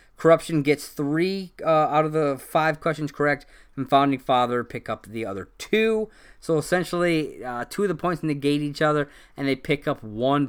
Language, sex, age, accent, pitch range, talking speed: English, male, 30-49, American, 125-160 Hz, 190 wpm